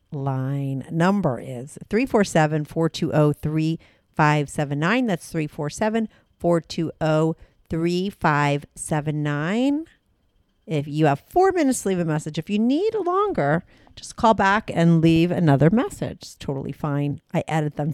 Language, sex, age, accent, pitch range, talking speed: English, female, 50-69, American, 140-180 Hz, 105 wpm